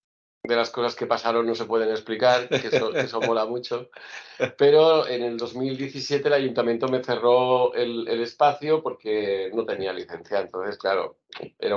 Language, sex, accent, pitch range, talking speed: Spanish, male, Spanish, 110-135 Hz, 170 wpm